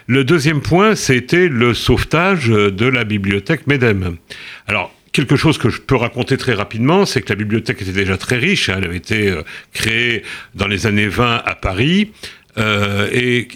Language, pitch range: French, 105-140 Hz